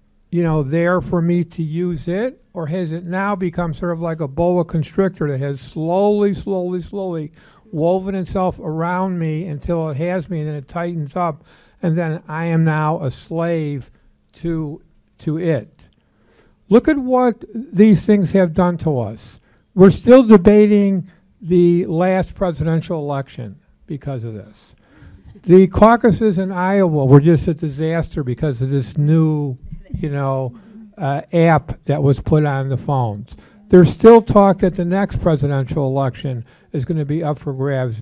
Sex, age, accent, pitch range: male, 50-69, American, 145-185 Hz